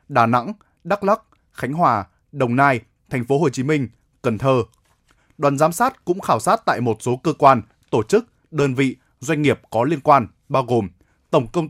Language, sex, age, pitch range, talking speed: Vietnamese, male, 20-39, 120-155 Hz, 200 wpm